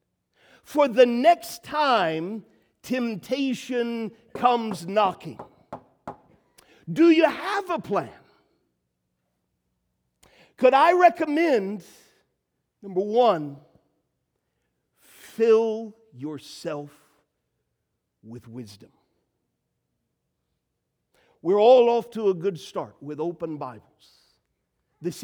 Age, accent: 50-69, American